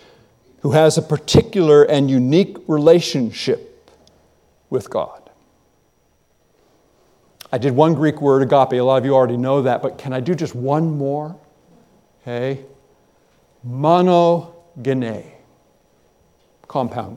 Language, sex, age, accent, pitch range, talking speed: English, male, 50-69, American, 135-190 Hz, 115 wpm